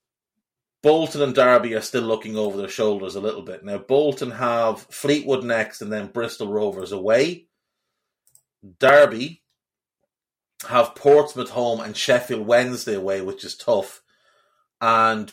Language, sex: English, male